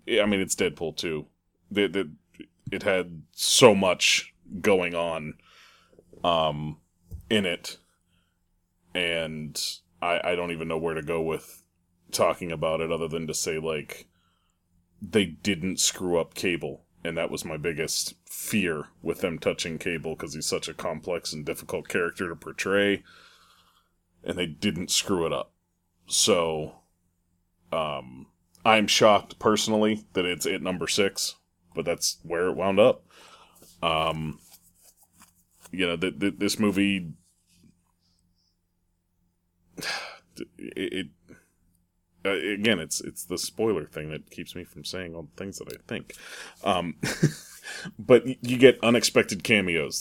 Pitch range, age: 85-95 Hz, 30-49